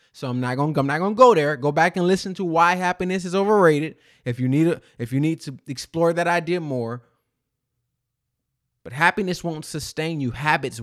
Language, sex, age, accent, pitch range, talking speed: English, male, 20-39, American, 125-165 Hz, 170 wpm